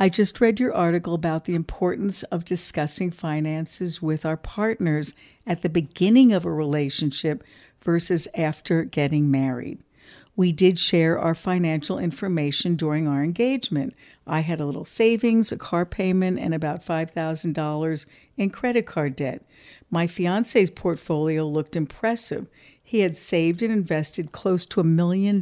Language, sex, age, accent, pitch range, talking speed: English, female, 60-79, American, 155-185 Hz, 145 wpm